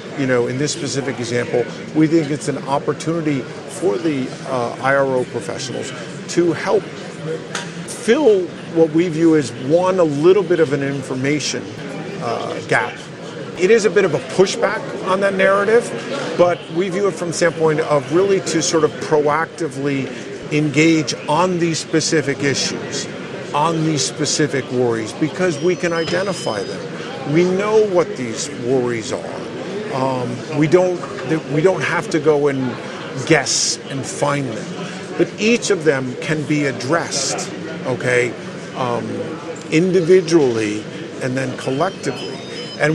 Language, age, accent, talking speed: English, 50-69, American, 140 wpm